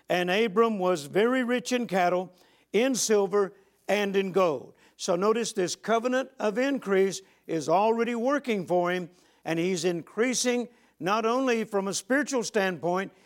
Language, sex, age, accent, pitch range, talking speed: English, male, 60-79, American, 185-225 Hz, 145 wpm